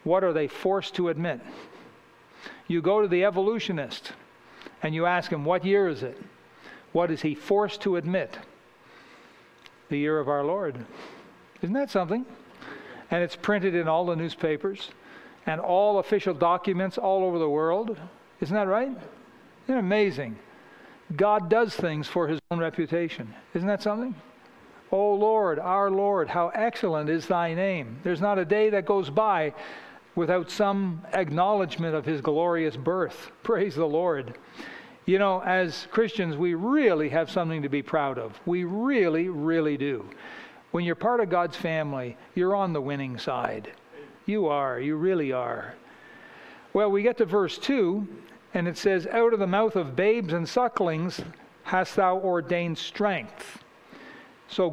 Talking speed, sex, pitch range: 160 wpm, male, 165-205 Hz